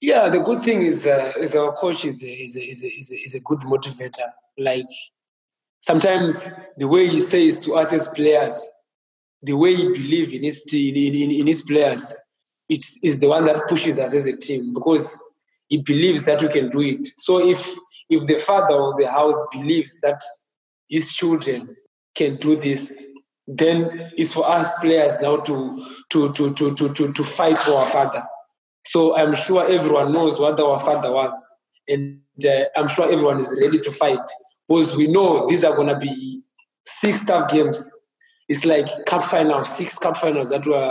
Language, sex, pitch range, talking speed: English, male, 140-170 Hz, 190 wpm